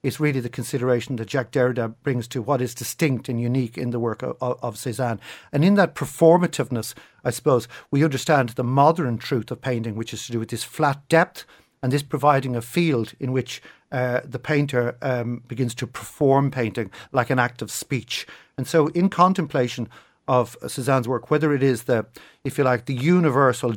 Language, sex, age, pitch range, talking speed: English, male, 50-69, 120-140 Hz, 200 wpm